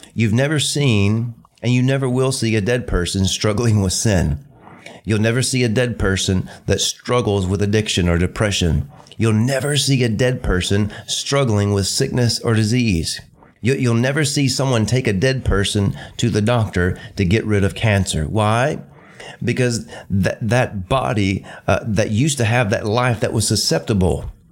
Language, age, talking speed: English, 30-49, 165 wpm